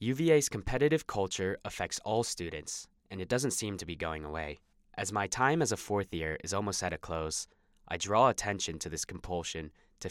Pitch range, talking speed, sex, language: 80-100 Hz, 195 wpm, male, English